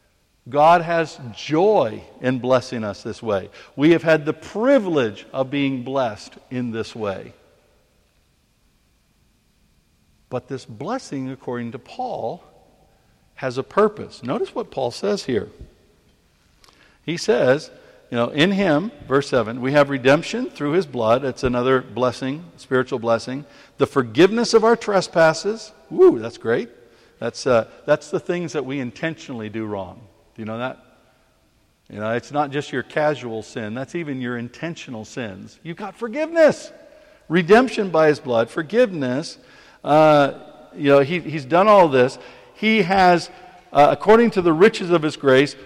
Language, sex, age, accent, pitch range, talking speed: English, male, 60-79, American, 130-185 Hz, 150 wpm